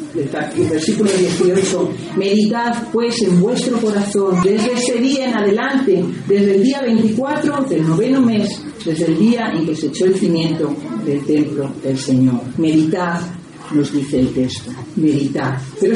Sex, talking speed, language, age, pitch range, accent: female, 150 wpm, Spanish, 40-59, 160-230 Hz, Spanish